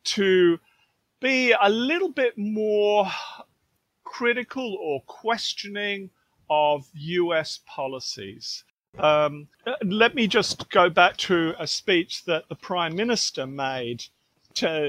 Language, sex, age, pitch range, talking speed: English, male, 40-59, 135-205 Hz, 110 wpm